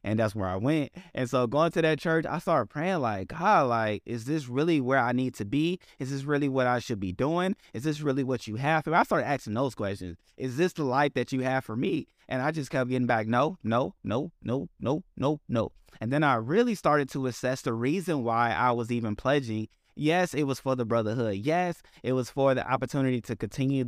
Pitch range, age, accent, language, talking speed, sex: 115-145 Hz, 20-39, American, English, 240 wpm, male